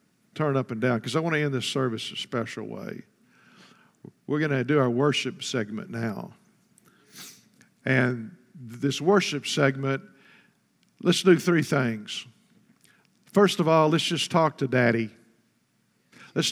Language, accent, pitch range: English, American, 130-170 Hz